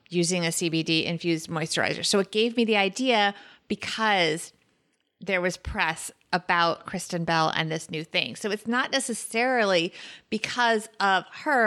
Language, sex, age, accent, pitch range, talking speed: English, female, 30-49, American, 170-215 Hz, 150 wpm